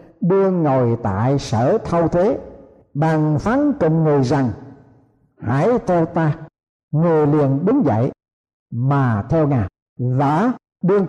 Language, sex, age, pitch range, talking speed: Vietnamese, male, 60-79, 140-190 Hz, 125 wpm